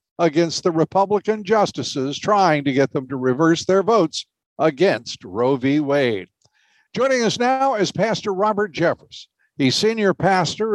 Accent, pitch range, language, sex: American, 130-190 Hz, English, male